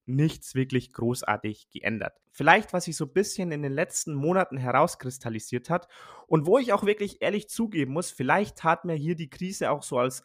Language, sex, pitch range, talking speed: German, male, 125-165 Hz, 195 wpm